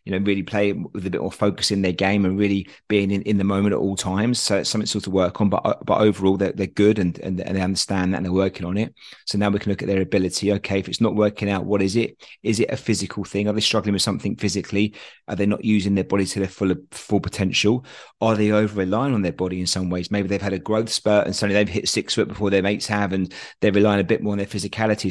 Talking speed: 290 wpm